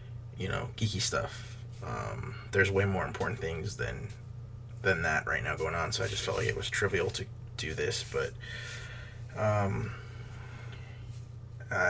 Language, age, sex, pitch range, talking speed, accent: English, 20-39, male, 100-120 Hz, 155 wpm, American